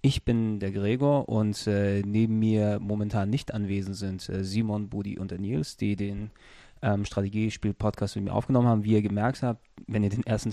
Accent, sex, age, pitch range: German, male, 20-39, 100-110 Hz